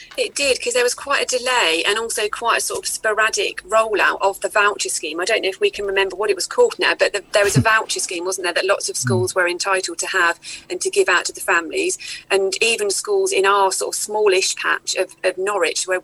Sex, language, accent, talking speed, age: female, English, British, 260 wpm, 30-49